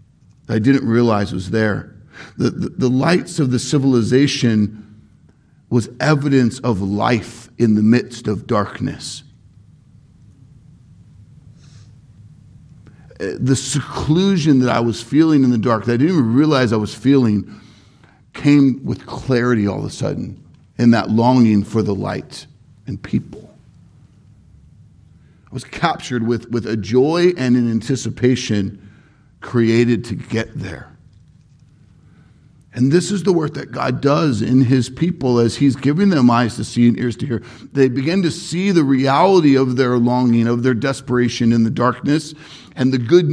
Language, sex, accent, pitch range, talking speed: English, male, American, 115-140 Hz, 150 wpm